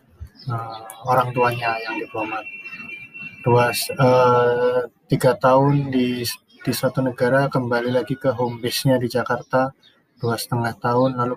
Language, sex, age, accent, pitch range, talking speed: Indonesian, male, 20-39, native, 115-135 Hz, 125 wpm